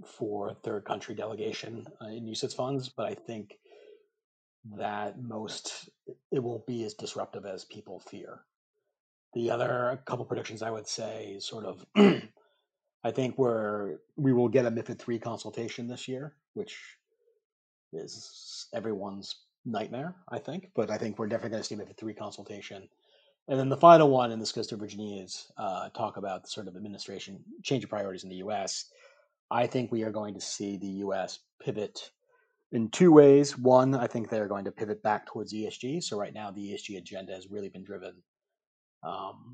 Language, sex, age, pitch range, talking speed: English, male, 30-49, 105-135 Hz, 185 wpm